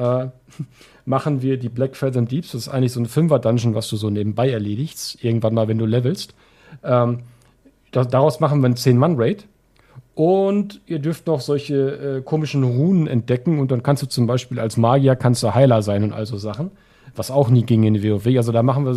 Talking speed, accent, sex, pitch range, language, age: 210 wpm, German, male, 120-145 Hz, German, 40-59